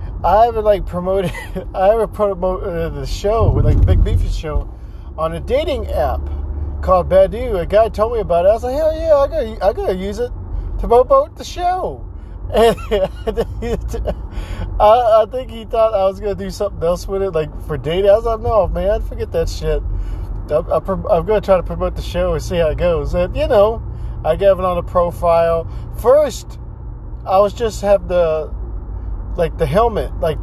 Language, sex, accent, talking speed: English, male, American, 195 wpm